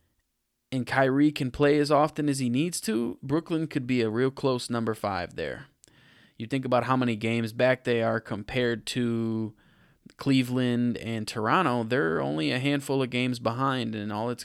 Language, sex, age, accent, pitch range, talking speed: English, male, 20-39, American, 110-135 Hz, 180 wpm